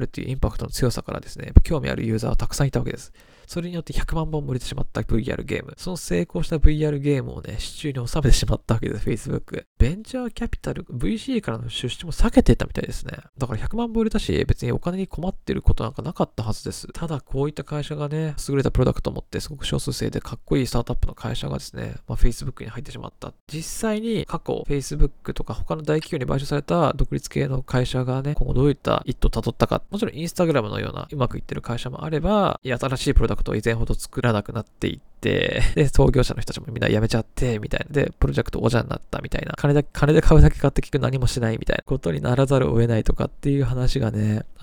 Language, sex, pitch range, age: Japanese, male, 120-155 Hz, 20-39